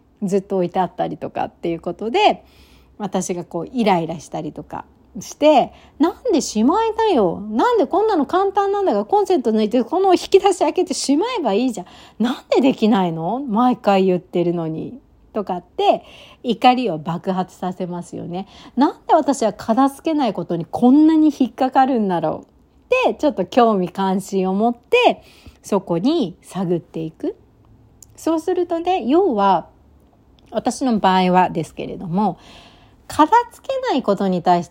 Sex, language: female, Japanese